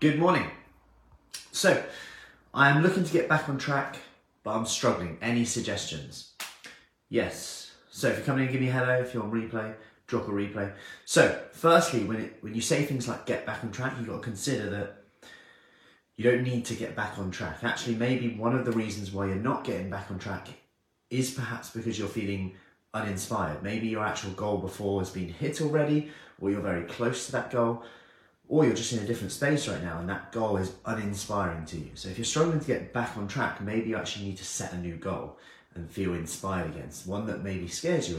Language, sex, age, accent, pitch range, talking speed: English, male, 30-49, British, 90-120 Hz, 215 wpm